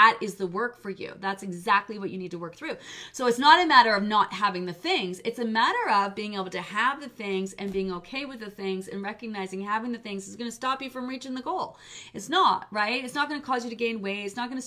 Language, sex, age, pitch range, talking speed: English, female, 30-49, 195-255 Hz, 275 wpm